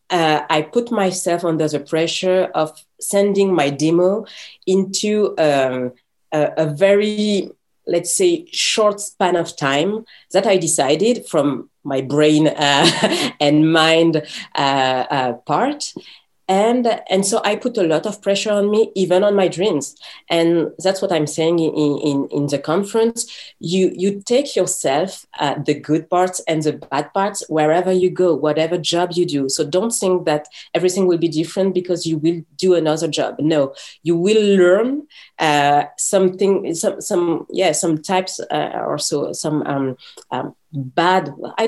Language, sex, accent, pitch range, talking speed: English, female, French, 155-200 Hz, 160 wpm